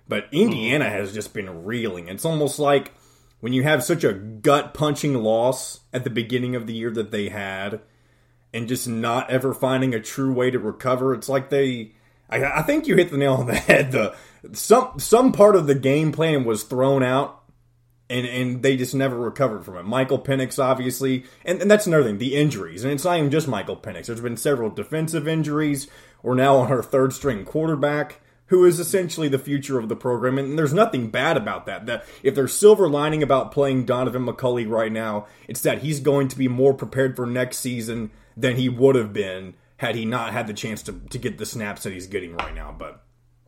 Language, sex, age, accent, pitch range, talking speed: English, male, 20-39, American, 125-145 Hz, 210 wpm